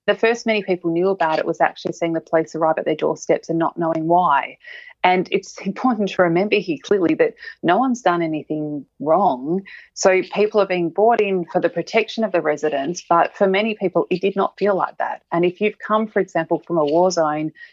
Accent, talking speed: Australian, 220 wpm